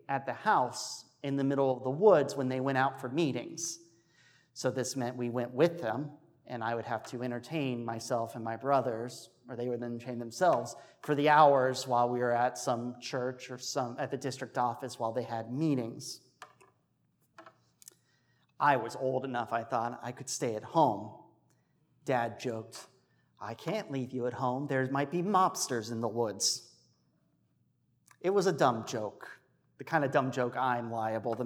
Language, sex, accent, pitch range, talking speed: English, male, American, 120-155 Hz, 180 wpm